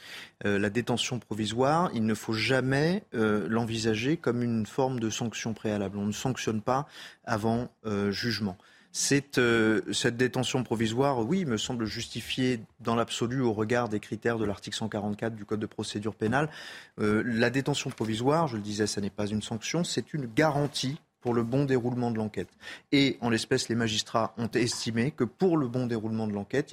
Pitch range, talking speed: 110-135 Hz, 180 wpm